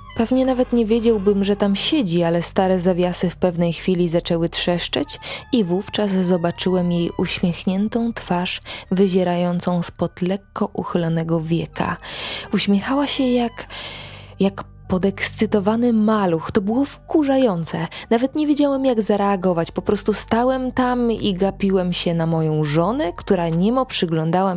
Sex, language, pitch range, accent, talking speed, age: female, Polish, 175-235 Hz, native, 130 wpm, 20-39